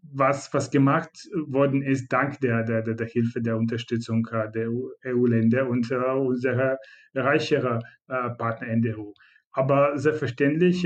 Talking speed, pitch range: 125 wpm, 120-135 Hz